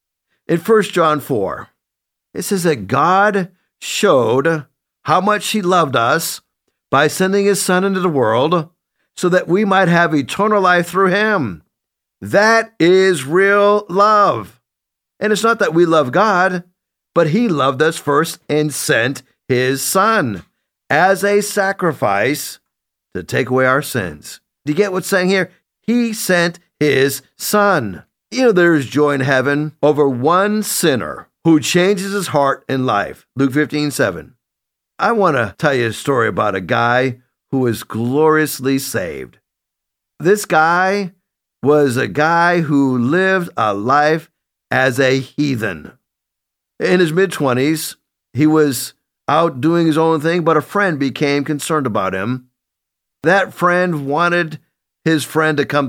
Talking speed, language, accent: 145 wpm, English, American